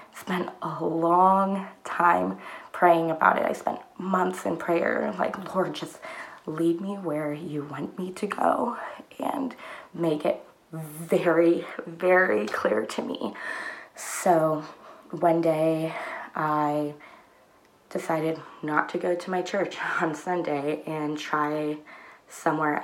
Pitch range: 165-210 Hz